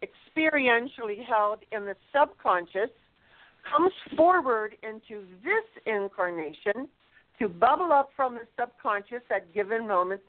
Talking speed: 110 wpm